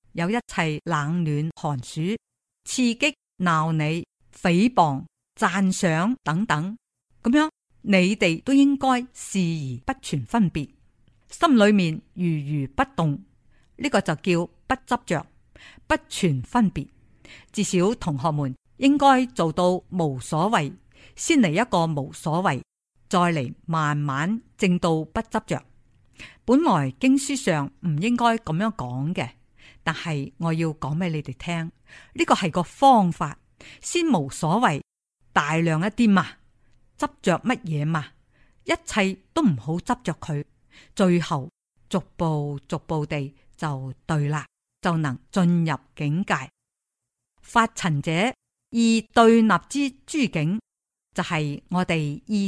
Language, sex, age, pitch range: Chinese, female, 50-69, 150-220 Hz